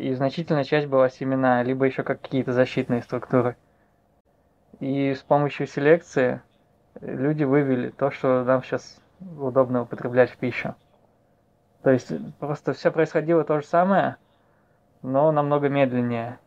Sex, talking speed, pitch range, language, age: male, 130 wpm, 125-140 Hz, Russian, 20-39